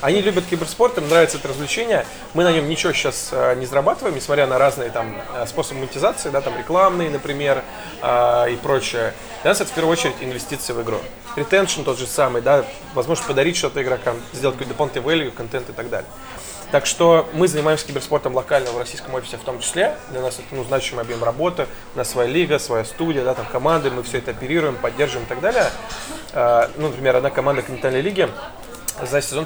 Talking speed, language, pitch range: 200 wpm, Russian, 125-160 Hz